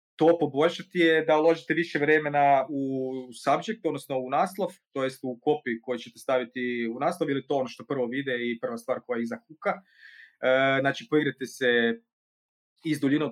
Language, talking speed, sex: Croatian, 170 wpm, male